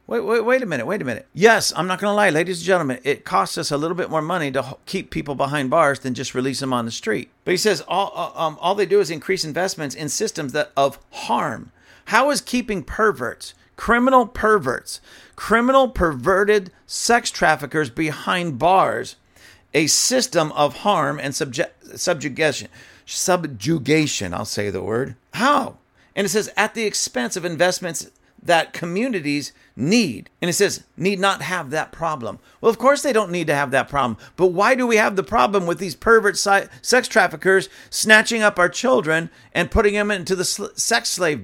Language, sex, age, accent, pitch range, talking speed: English, male, 50-69, American, 160-225 Hz, 190 wpm